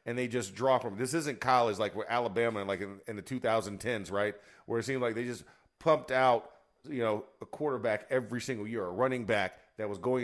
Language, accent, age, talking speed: English, American, 40-59, 230 wpm